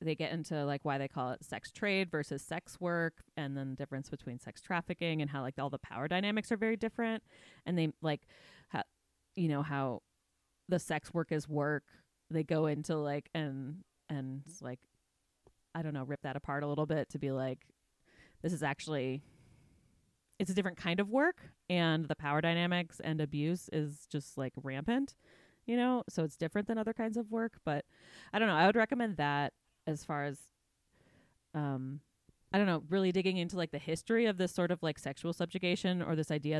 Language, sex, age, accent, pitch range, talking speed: English, female, 20-39, American, 140-180 Hz, 195 wpm